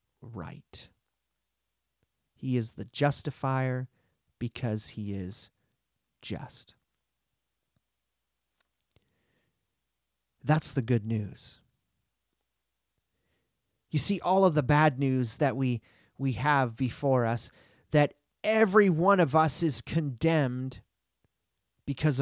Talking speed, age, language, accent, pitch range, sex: 90 wpm, 30-49, English, American, 110-155 Hz, male